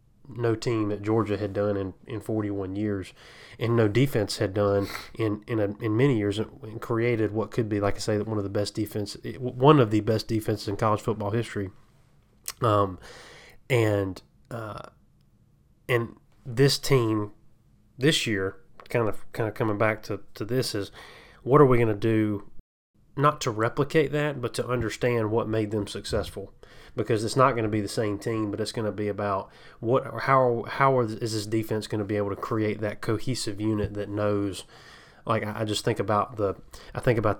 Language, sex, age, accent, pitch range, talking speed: English, male, 20-39, American, 105-120 Hz, 195 wpm